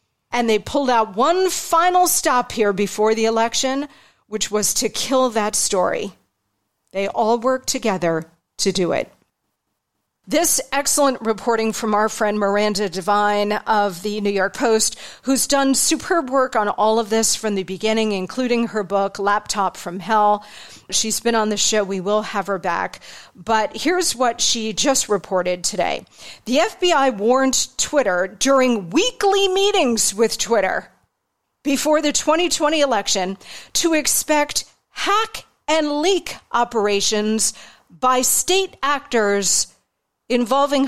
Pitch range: 210-285 Hz